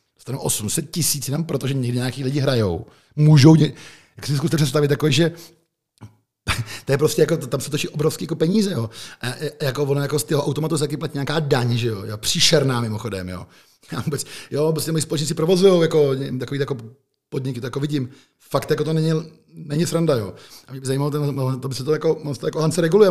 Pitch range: 130-160 Hz